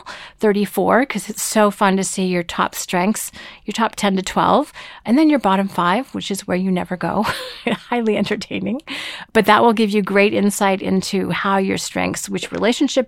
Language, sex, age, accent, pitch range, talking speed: English, female, 40-59, American, 195-235 Hz, 190 wpm